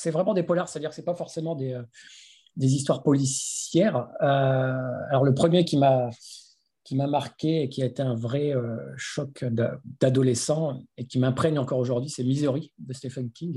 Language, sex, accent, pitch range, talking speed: French, male, French, 130-160 Hz, 195 wpm